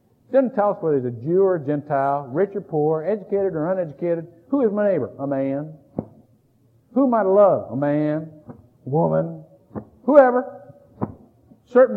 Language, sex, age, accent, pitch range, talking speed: English, male, 50-69, American, 140-220 Hz, 170 wpm